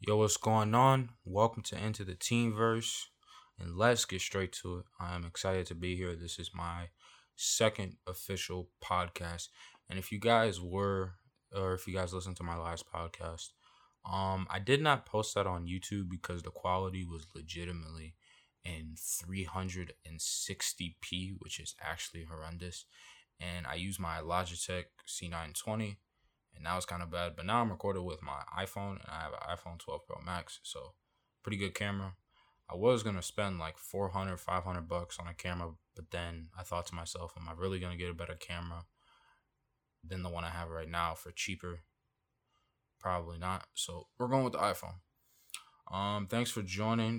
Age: 20-39